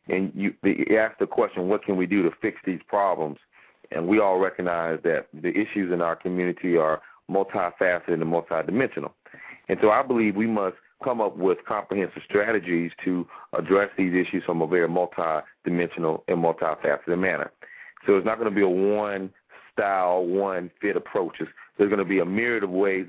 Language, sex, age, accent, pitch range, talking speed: English, male, 40-59, American, 85-100 Hz, 175 wpm